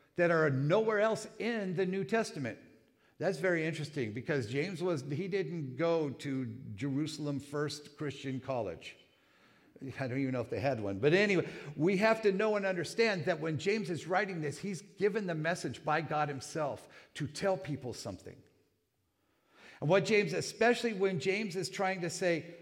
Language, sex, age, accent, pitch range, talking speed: English, male, 50-69, American, 135-190 Hz, 170 wpm